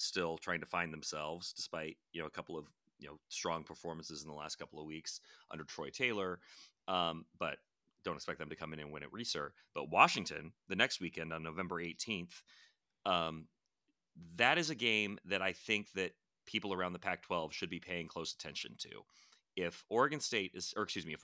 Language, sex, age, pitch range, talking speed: English, male, 30-49, 80-95 Hz, 205 wpm